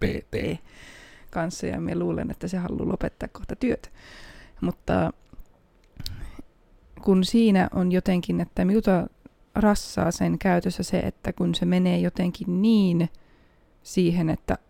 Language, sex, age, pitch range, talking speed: Finnish, female, 20-39, 170-185 Hz, 120 wpm